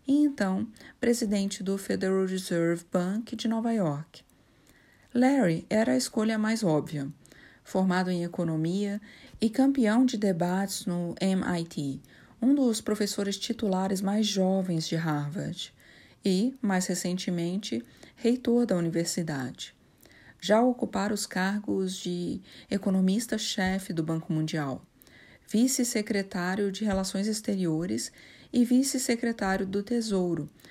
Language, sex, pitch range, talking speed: Portuguese, female, 180-225 Hz, 110 wpm